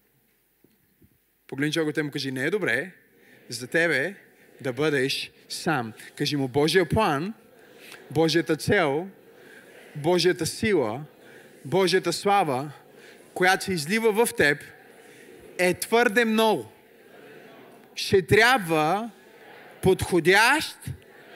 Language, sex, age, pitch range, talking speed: Bulgarian, male, 20-39, 170-270 Hz, 95 wpm